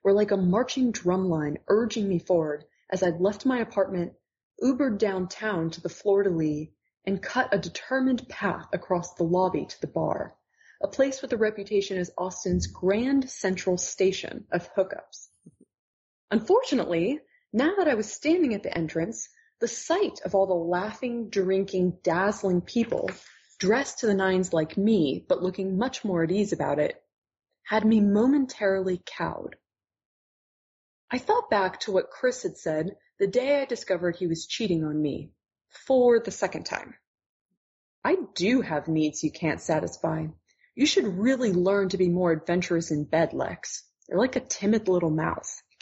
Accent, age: American, 20-39